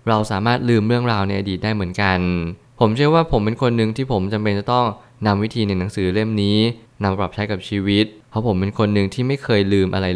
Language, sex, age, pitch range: Thai, male, 20-39, 100-115 Hz